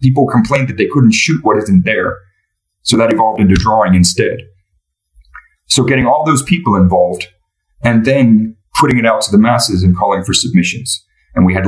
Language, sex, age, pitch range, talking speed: English, male, 30-49, 95-120 Hz, 185 wpm